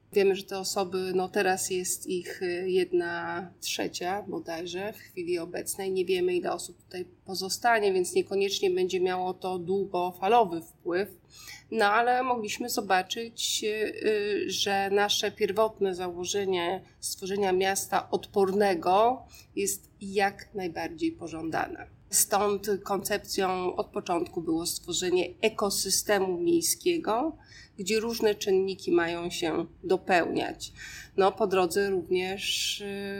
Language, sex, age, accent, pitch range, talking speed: Polish, female, 30-49, native, 185-220 Hz, 110 wpm